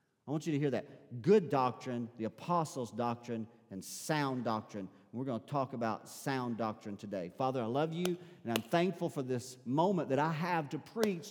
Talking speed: 195 wpm